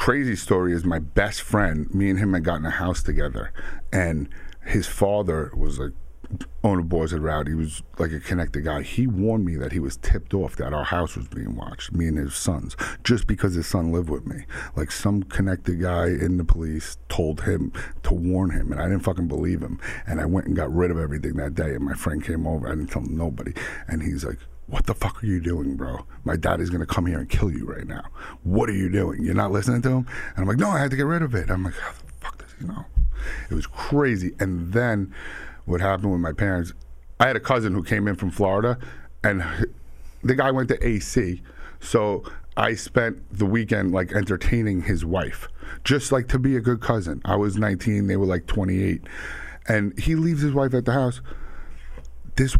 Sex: male